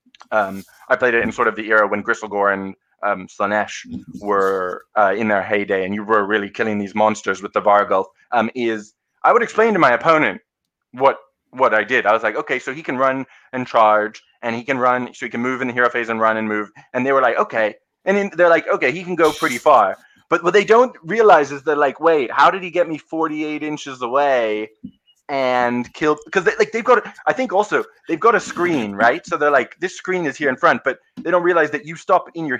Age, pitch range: 20-39, 110-165 Hz